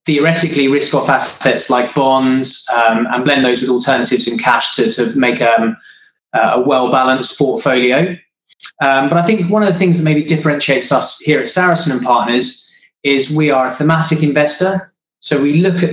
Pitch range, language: 125-155 Hz, English